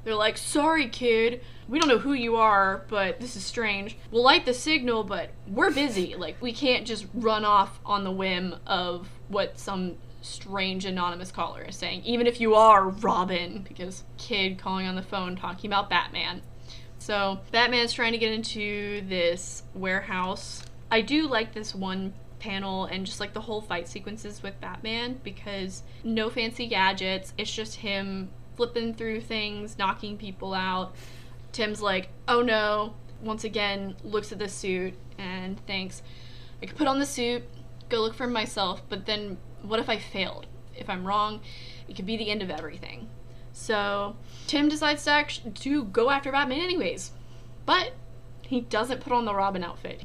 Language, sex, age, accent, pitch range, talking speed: English, female, 20-39, American, 185-230 Hz, 175 wpm